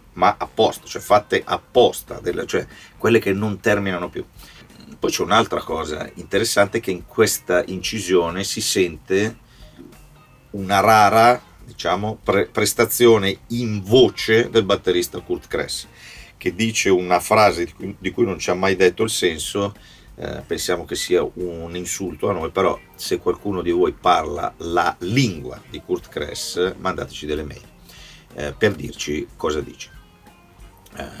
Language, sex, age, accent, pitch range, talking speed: Italian, male, 40-59, native, 85-115 Hz, 140 wpm